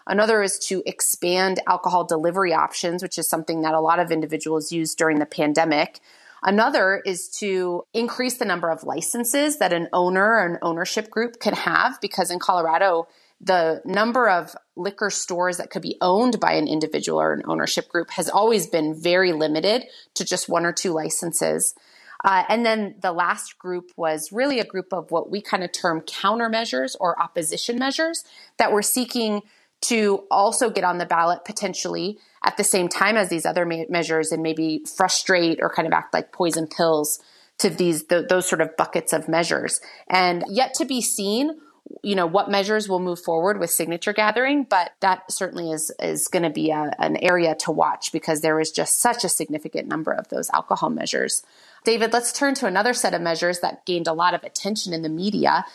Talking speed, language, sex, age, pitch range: 195 wpm, English, female, 30-49, 165-210 Hz